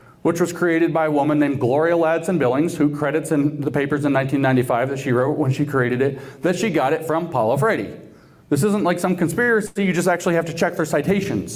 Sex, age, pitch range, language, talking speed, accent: male, 40-59, 145-185 Hz, English, 225 wpm, American